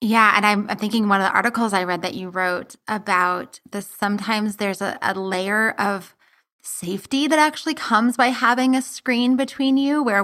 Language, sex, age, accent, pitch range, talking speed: English, female, 20-39, American, 195-250 Hz, 190 wpm